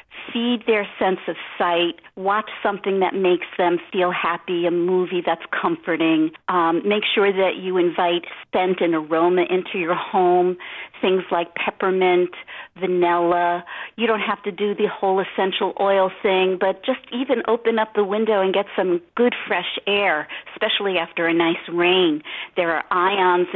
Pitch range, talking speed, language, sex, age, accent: 180-220 Hz, 160 wpm, English, female, 50-69, American